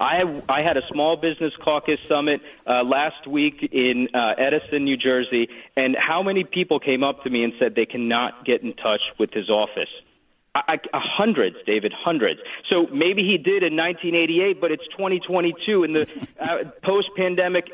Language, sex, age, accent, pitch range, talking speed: English, male, 40-59, American, 130-190 Hz, 170 wpm